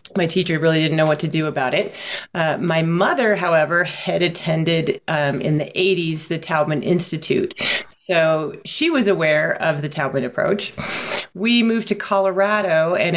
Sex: female